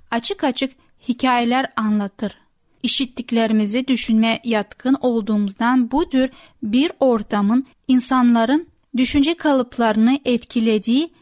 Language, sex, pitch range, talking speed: Turkish, female, 220-275 Hz, 80 wpm